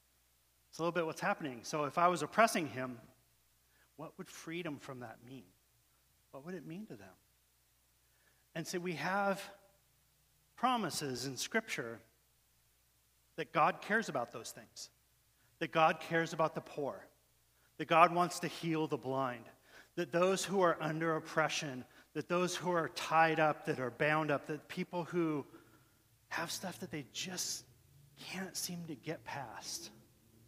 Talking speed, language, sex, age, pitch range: 155 wpm, English, male, 40-59, 130-175 Hz